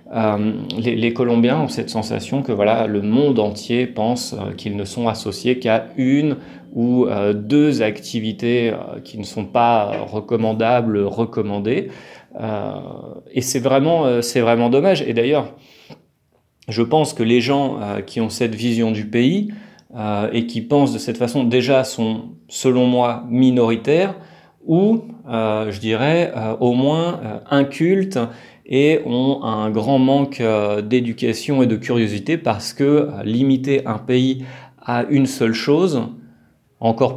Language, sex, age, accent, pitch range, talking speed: French, male, 30-49, French, 110-135 Hz, 150 wpm